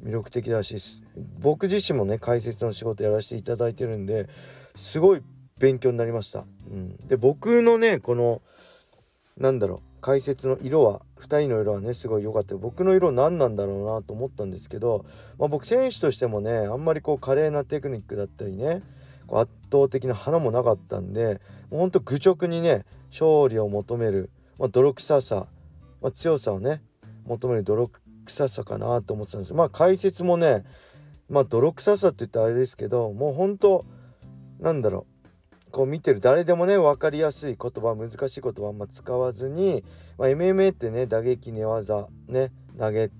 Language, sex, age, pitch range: Japanese, male, 40-59, 110-160 Hz